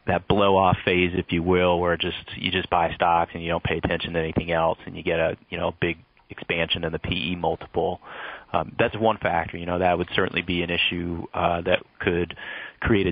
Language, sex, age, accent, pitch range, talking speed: English, male, 30-49, American, 85-95 Hz, 220 wpm